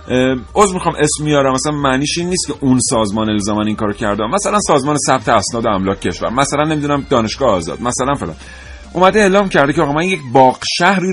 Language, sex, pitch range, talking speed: Persian, male, 120-170 Hz, 200 wpm